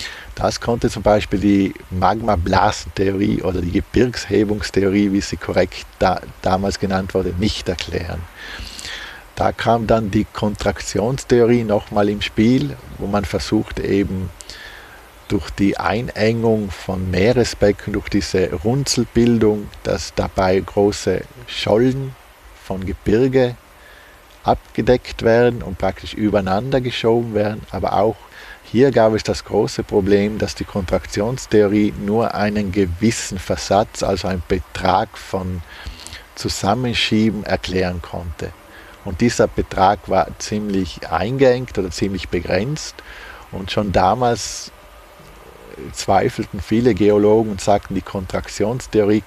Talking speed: 115 wpm